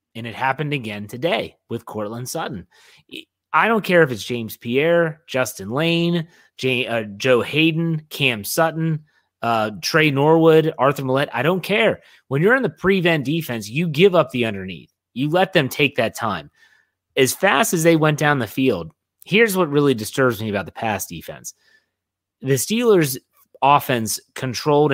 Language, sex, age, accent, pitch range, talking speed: English, male, 30-49, American, 115-155 Hz, 170 wpm